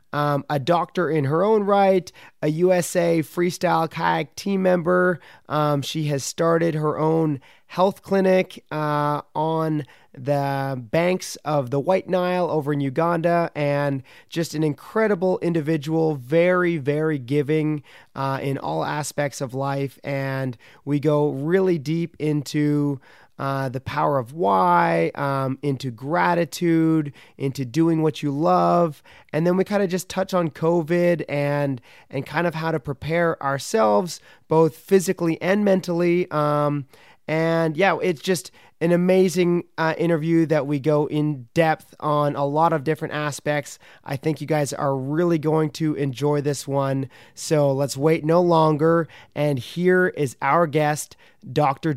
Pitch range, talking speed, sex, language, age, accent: 145-170 Hz, 150 wpm, male, English, 30-49, American